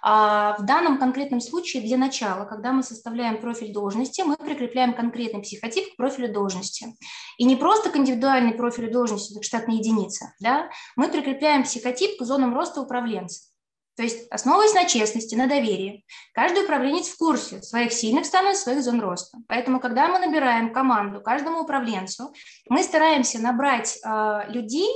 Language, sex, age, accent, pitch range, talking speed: Russian, female, 20-39, native, 220-280 Hz, 155 wpm